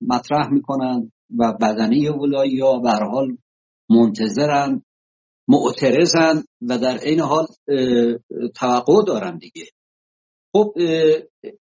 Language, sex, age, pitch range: English, male, 60-79, 140-205 Hz